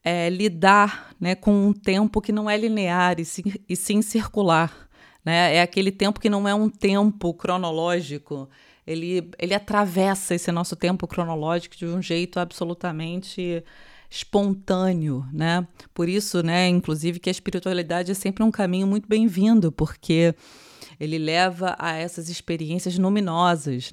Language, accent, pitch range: Portuguese, Brazilian, 170-200 Hz